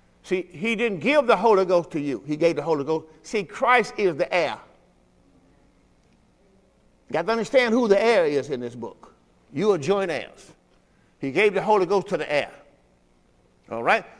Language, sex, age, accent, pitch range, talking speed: English, male, 50-69, American, 155-225 Hz, 185 wpm